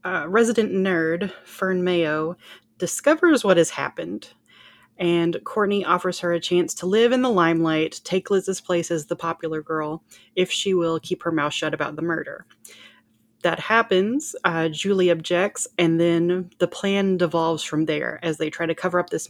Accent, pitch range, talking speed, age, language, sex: American, 160-185 Hz, 175 wpm, 20-39, English, female